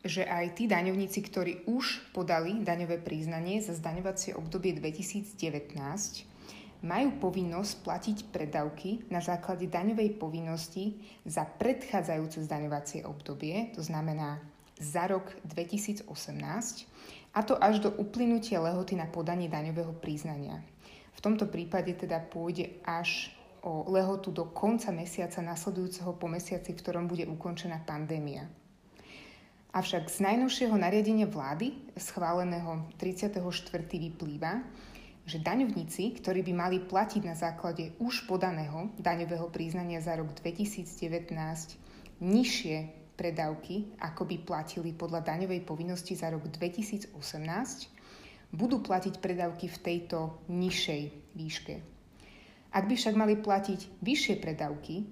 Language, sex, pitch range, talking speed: Slovak, female, 165-200 Hz, 115 wpm